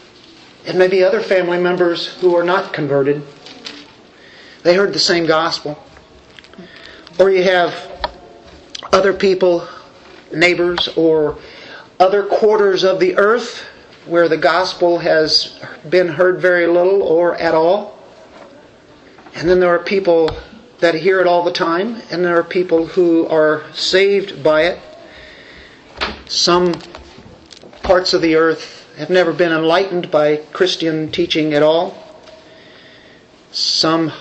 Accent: American